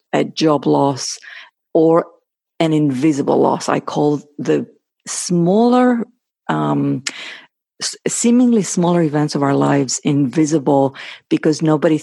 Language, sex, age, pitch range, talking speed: English, female, 50-69, 150-185 Hz, 110 wpm